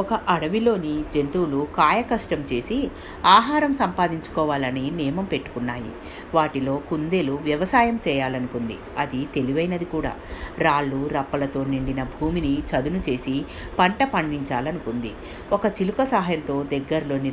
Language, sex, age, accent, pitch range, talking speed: Telugu, female, 50-69, native, 135-185 Hz, 95 wpm